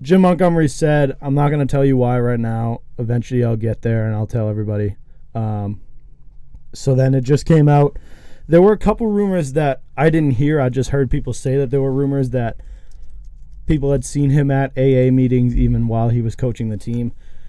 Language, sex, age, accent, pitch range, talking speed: English, male, 20-39, American, 110-135 Hz, 205 wpm